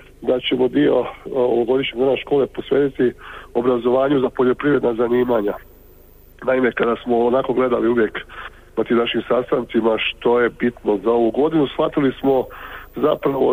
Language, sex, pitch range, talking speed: Croatian, male, 115-130 Hz, 140 wpm